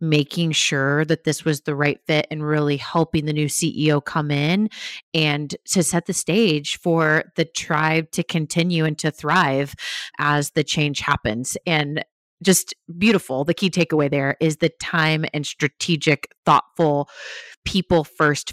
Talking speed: 150 wpm